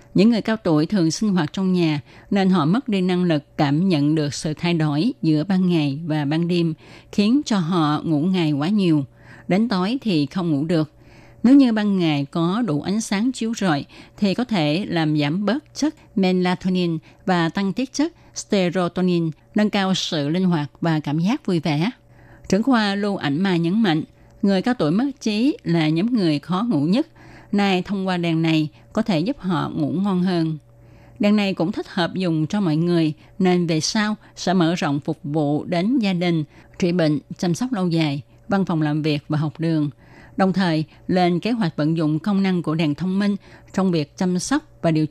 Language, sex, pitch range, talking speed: Vietnamese, female, 155-195 Hz, 205 wpm